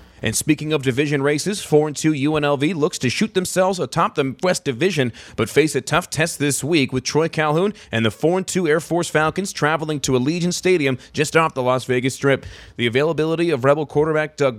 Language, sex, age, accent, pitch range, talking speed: English, male, 30-49, American, 130-160 Hz, 195 wpm